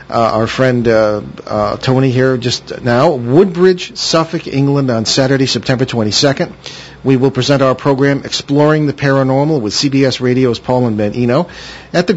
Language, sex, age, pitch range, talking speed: English, male, 50-69, 125-155 Hz, 165 wpm